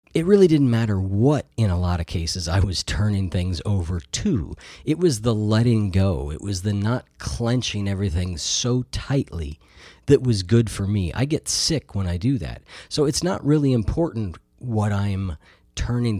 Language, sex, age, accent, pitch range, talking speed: English, male, 40-59, American, 90-115 Hz, 180 wpm